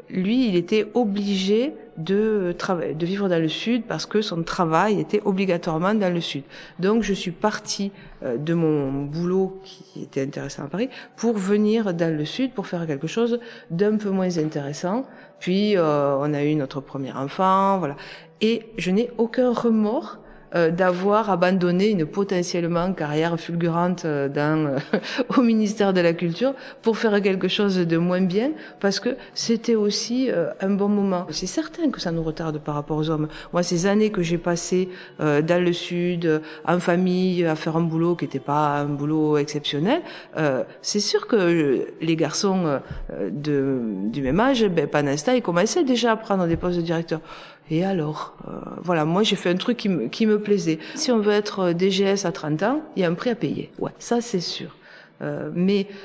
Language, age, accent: French, 50-69, French